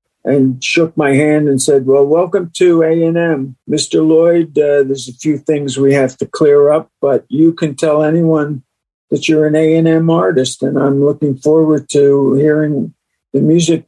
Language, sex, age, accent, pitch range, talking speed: English, male, 50-69, American, 140-165 Hz, 175 wpm